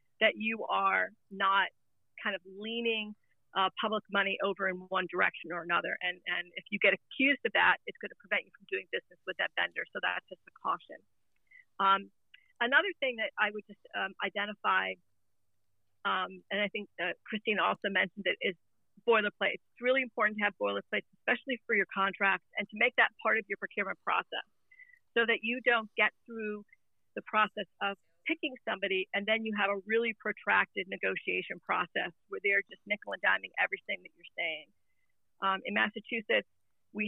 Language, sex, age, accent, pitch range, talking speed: English, female, 40-59, American, 195-235 Hz, 185 wpm